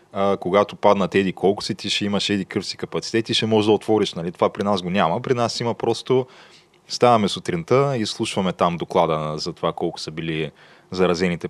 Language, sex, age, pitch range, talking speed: Bulgarian, male, 20-39, 90-110 Hz, 200 wpm